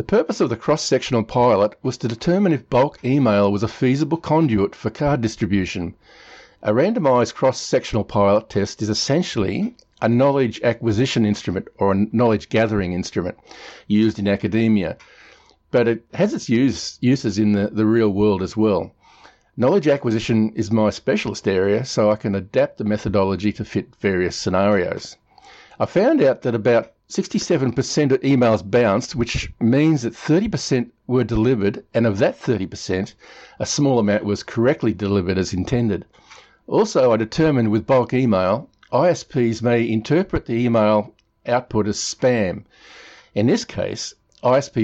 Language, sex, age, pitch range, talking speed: English, male, 50-69, 105-130 Hz, 150 wpm